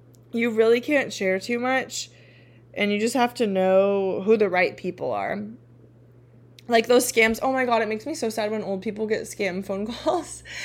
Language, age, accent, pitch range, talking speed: English, 20-39, American, 190-240 Hz, 195 wpm